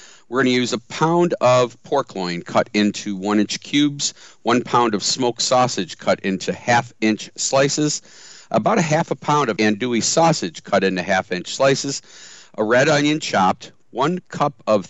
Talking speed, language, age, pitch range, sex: 165 wpm, English, 50-69, 105-150 Hz, male